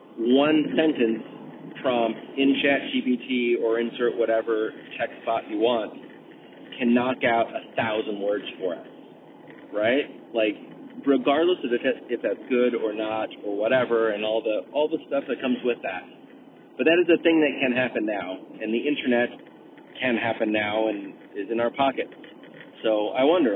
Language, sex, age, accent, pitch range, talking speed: English, male, 30-49, American, 115-155 Hz, 170 wpm